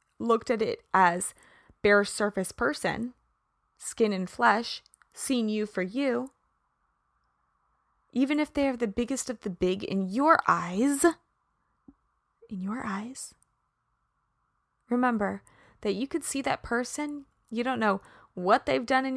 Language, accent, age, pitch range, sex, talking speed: English, American, 20-39, 205-260 Hz, female, 135 wpm